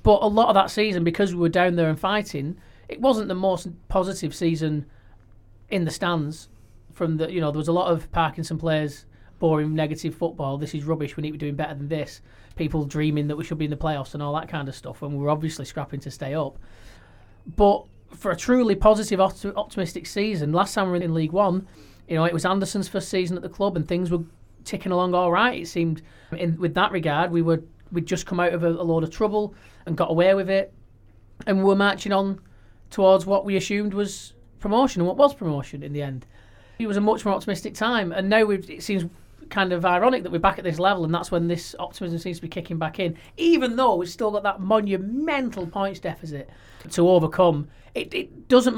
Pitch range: 155-195 Hz